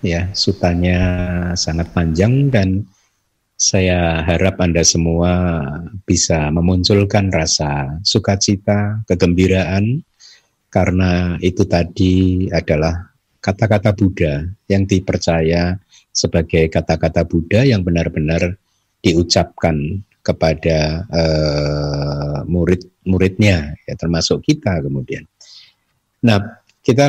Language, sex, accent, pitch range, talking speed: Indonesian, male, native, 85-105 Hz, 80 wpm